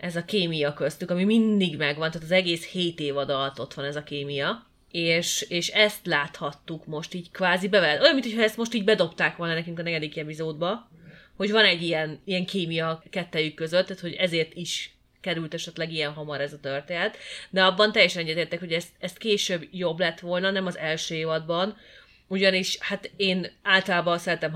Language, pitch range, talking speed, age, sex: Hungarian, 155-190 Hz, 185 wpm, 30-49, female